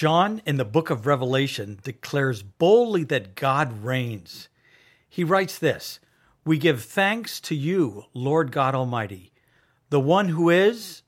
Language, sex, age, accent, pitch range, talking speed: English, male, 50-69, American, 130-175 Hz, 140 wpm